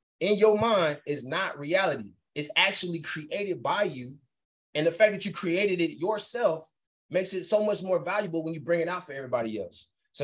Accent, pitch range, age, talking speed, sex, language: American, 155-195 Hz, 20-39, 200 wpm, male, English